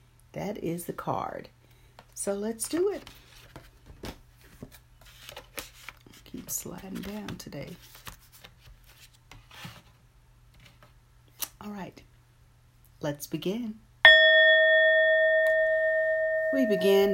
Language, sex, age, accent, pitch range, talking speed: English, female, 40-59, American, 145-220 Hz, 65 wpm